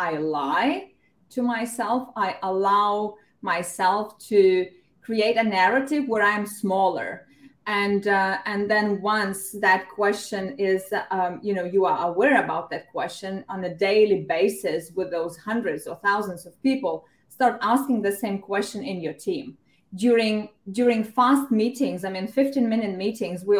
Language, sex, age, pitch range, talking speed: English, female, 30-49, 195-245 Hz, 150 wpm